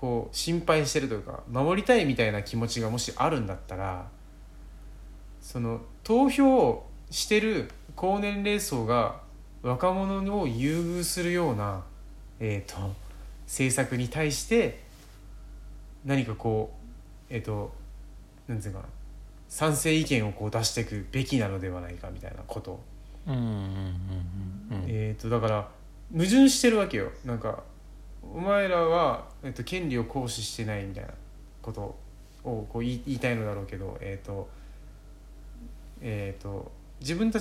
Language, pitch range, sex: Japanese, 100-160 Hz, male